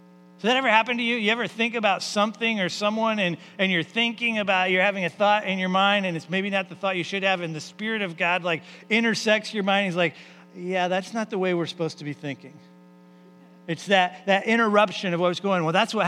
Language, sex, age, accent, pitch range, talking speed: English, male, 40-59, American, 150-200 Hz, 250 wpm